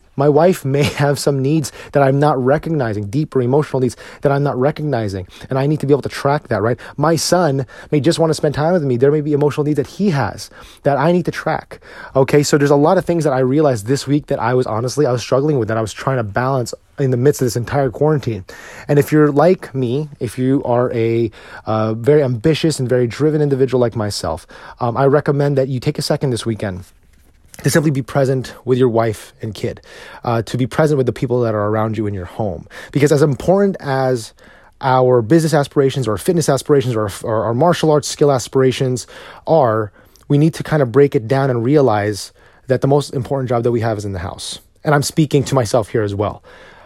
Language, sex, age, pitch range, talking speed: English, male, 30-49, 120-150 Hz, 235 wpm